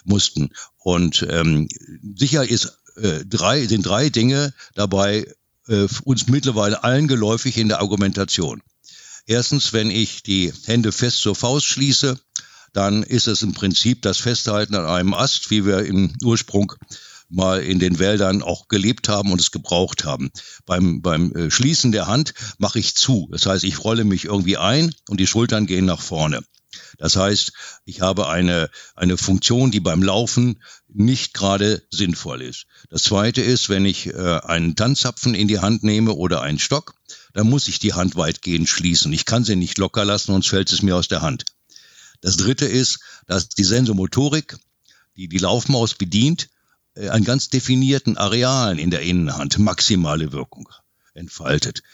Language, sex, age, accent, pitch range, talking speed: German, male, 60-79, German, 95-120 Hz, 165 wpm